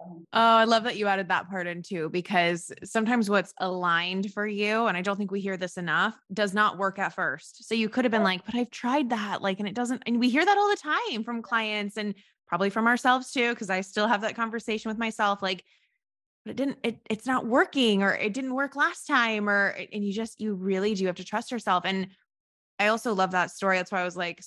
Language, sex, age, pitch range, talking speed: English, female, 20-39, 190-250 Hz, 250 wpm